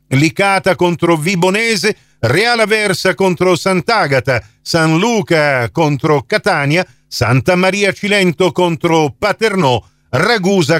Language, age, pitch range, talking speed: Italian, 50-69, 130-185 Hz, 95 wpm